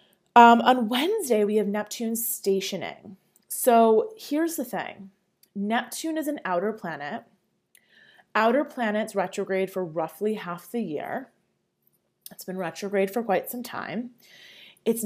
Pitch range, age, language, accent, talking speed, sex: 190-240 Hz, 20-39, English, American, 130 wpm, female